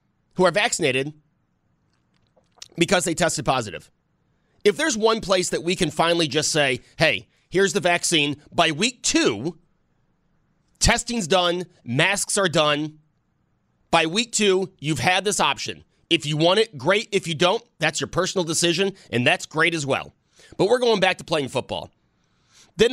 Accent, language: American, English